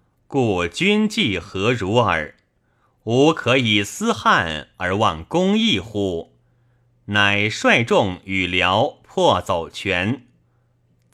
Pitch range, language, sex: 95-130 Hz, Chinese, male